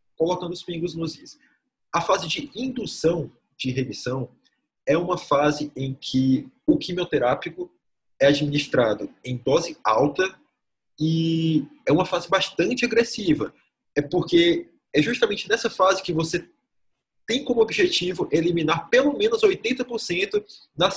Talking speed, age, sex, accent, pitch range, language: 130 wpm, 20-39, male, Brazilian, 150-235 Hz, Portuguese